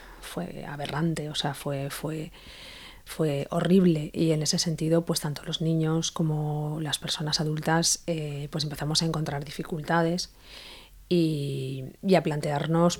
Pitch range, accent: 150-170 Hz, Spanish